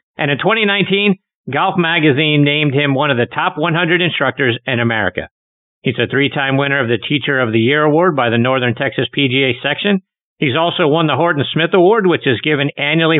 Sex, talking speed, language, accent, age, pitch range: male, 195 wpm, English, American, 50-69, 135-170 Hz